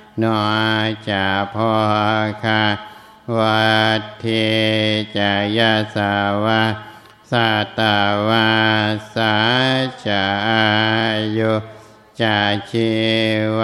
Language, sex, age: Thai, male, 60-79